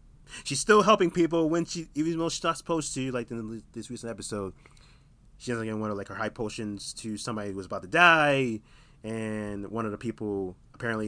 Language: English